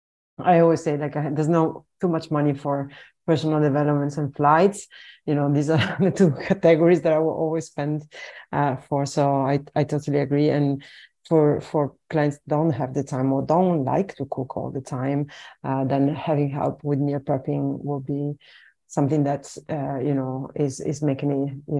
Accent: French